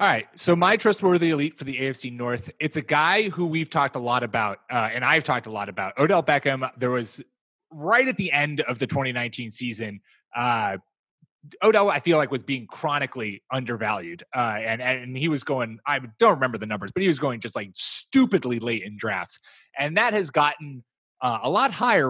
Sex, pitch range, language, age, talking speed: male, 120-150 Hz, English, 30-49, 205 wpm